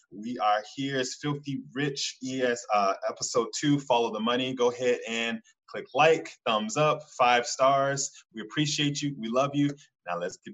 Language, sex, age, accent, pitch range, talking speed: English, male, 20-39, American, 115-145 Hz, 175 wpm